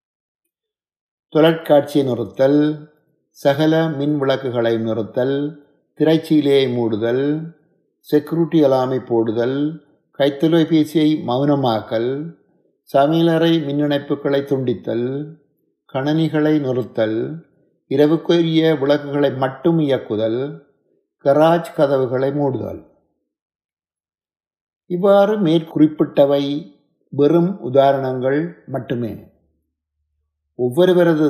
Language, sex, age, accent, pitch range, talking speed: Tamil, male, 50-69, native, 125-155 Hz, 60 wpm